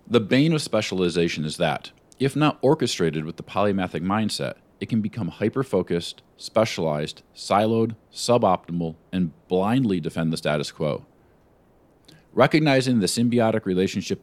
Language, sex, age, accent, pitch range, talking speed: English, male, 40-59, American, 80-110 Hz, 125 wpm